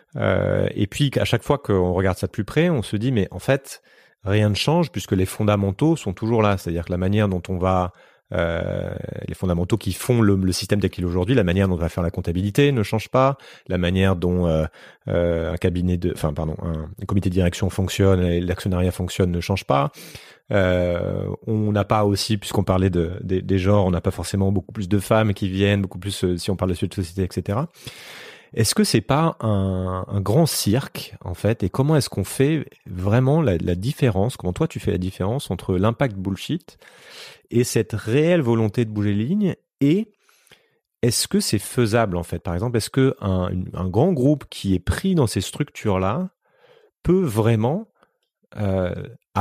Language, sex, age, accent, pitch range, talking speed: French, male, 30-49, French, 90-120 Hz, 205 wpm